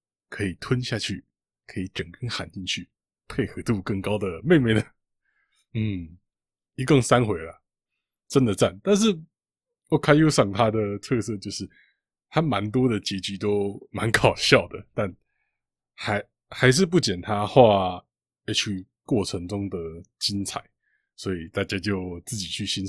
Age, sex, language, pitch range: 20-39, male, Chinese, 95-130 Hz